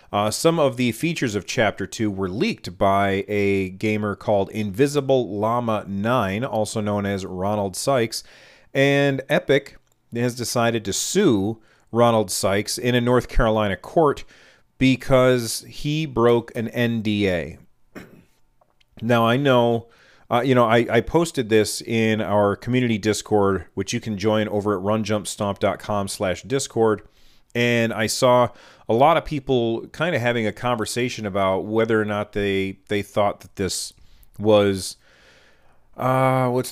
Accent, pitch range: American, 100-120 Hz